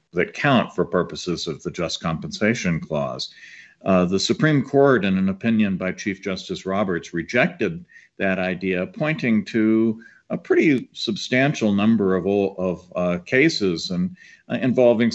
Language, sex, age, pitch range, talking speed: English, male, 50-69, 90-110 Hz, 145 wpm